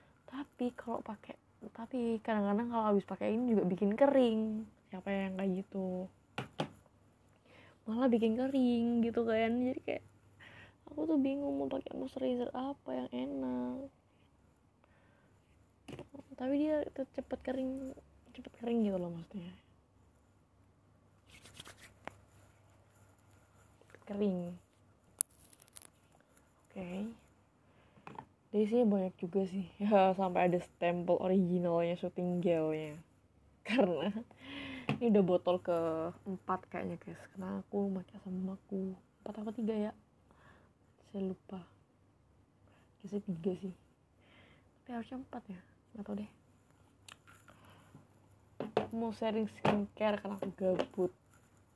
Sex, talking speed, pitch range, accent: female, 110 wpm, 145-220 Hz, native